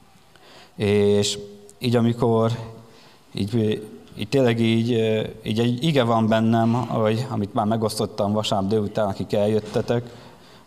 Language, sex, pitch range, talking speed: Hungarian, male, 105-120 Hz, 100 wpm